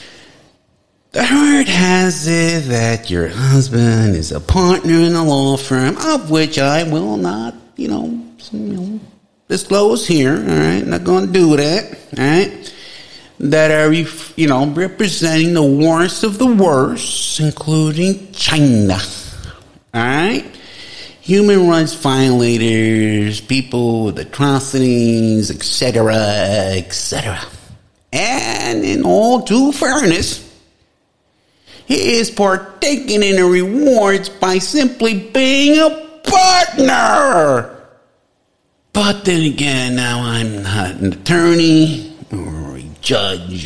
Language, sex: English, male